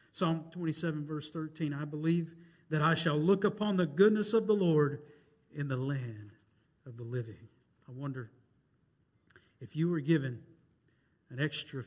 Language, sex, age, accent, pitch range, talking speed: English, male, 50-69, American, 130-160 Hz, 150 wpm